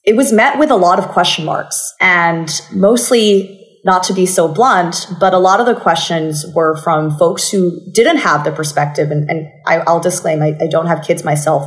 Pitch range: 165-205 Hz